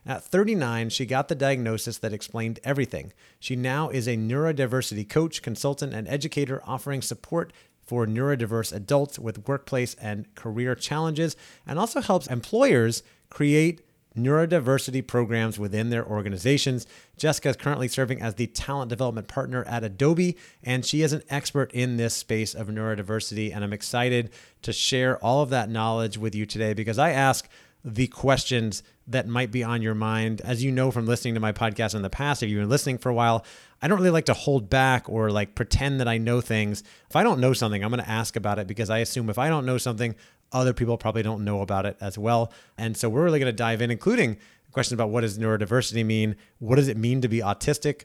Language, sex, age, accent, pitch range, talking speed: English, male, 30-49, American, 110-135 Hz, 205 wpm